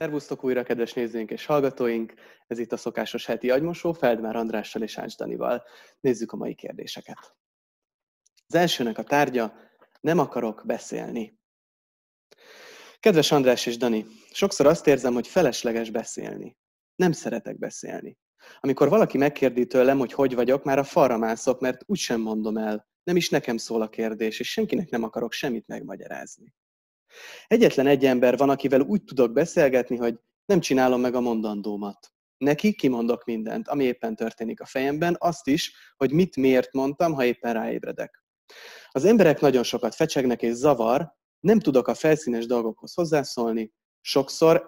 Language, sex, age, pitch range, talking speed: Hungarian, male, 30-49, 120-155 Hz, 150 wpm